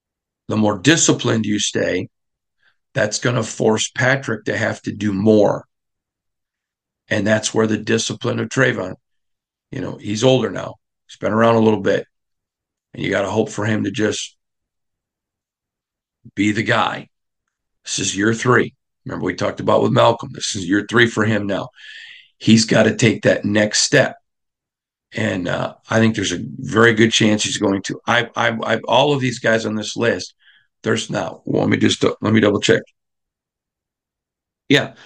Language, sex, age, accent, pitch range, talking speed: English, male, 50-69, American, 105-130 Hz, 170 wpm